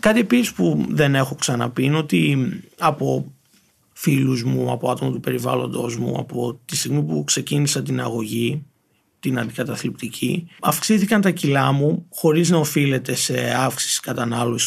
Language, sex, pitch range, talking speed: Greek, male, 125-190 Hz, 145 wpm